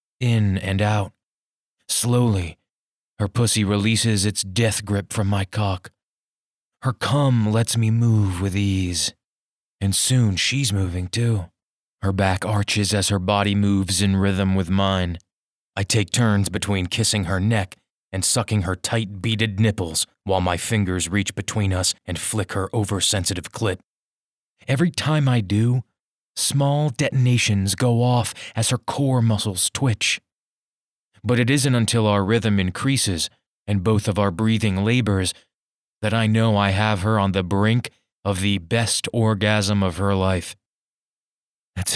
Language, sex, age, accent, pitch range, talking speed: English, male, 20-39, American, 95-115 Hz, 145 wpm